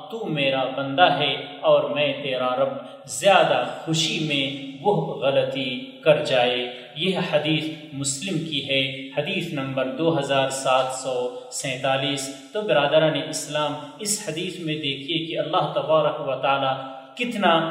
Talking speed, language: 130 wpm, Urdu